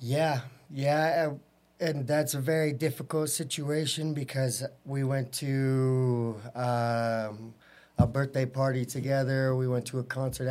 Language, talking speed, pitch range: English, 125 wpm, 120-135 Hz